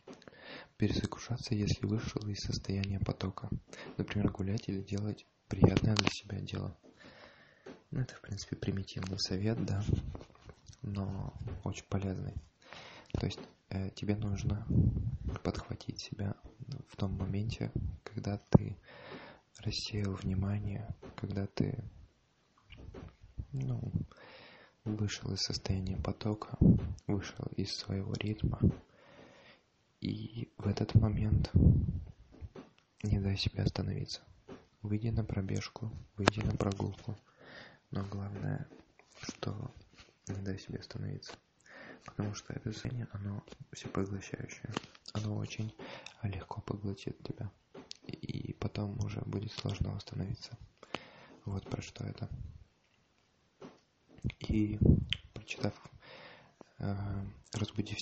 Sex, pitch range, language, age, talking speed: male, 100-115 Hz, English, 20-39, 95 wpm